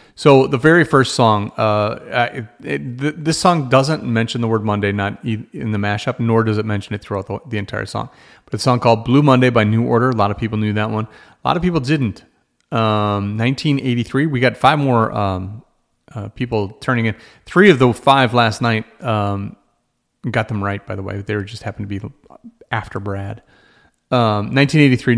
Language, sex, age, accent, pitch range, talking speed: English, male, 40-59, American, 105-130 Hz, 205 wpm